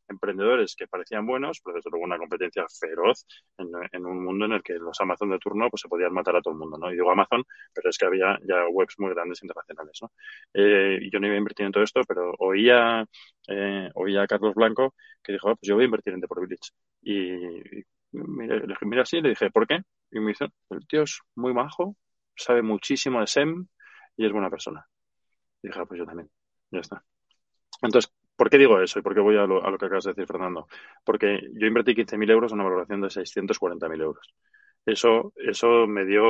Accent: Spanish